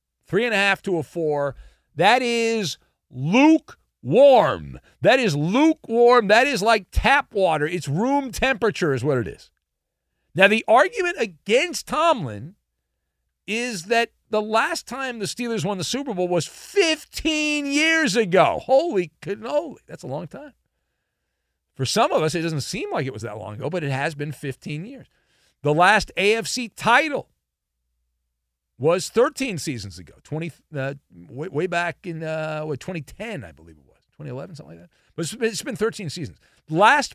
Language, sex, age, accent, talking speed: English, male, 50-69, American, 165 wpm